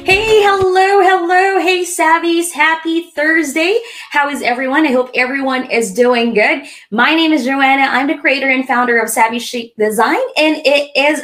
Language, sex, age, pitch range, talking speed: English, female, 20-39, 200-280 Hz, 170 wpm